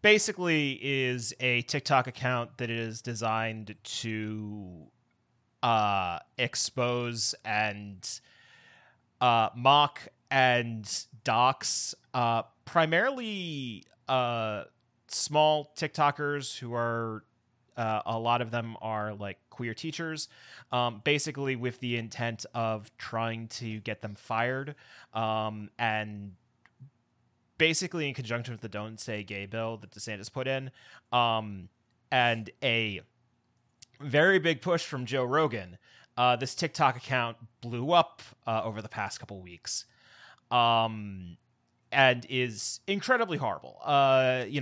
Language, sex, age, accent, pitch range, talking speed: English, male, 30-49, American, 115-145 Hz, 115 wpm